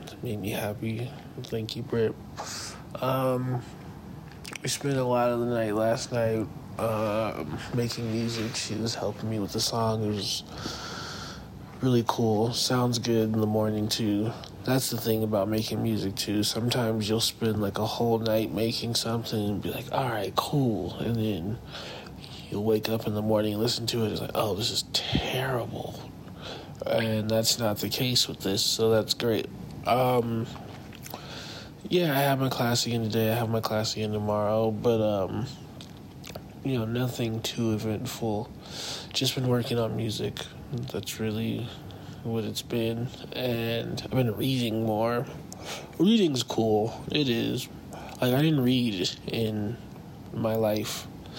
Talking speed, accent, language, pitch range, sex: 155 wpm, American, English, 110-120 Hz, male